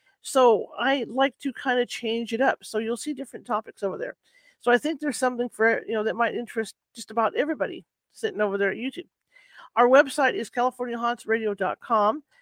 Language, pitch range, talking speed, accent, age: English, 210-255 Hz, 190 wpm, American, 40-59